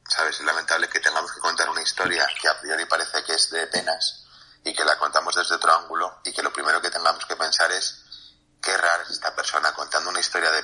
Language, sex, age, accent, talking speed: Spanish, male, 30-49, Spanish, 235 wpm